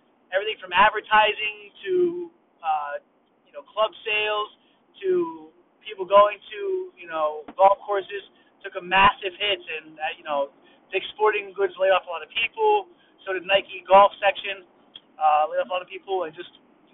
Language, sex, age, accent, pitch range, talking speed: English, male, 30-49, American, 185-280 Hz, 175 wpm